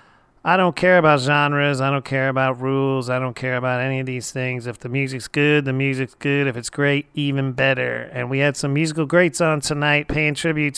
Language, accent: English, American